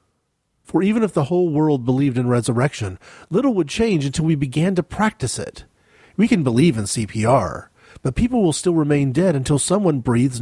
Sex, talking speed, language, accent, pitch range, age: male, 185 wpm, English, American, 125-170 Hz, 40-59